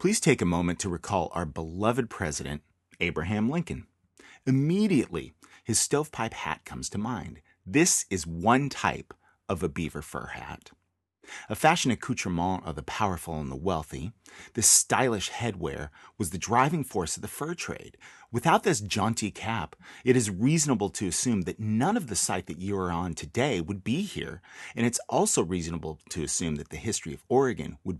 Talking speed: 175 wpm